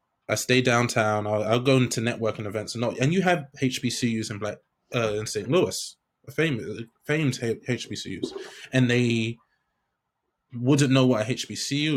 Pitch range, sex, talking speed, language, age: 110-135 Hz, male, 155 wpm, English, 20-39